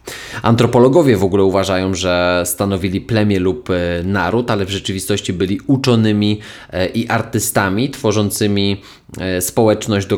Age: 20-39